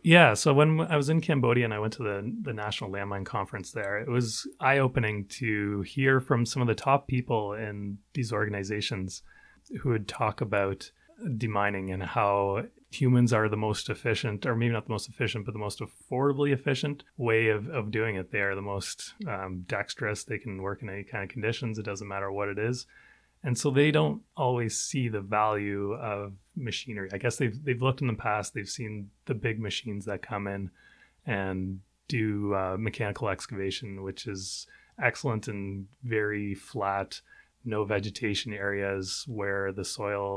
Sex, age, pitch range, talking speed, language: male, 30-49, 100-120 Hz, 180 wpm, English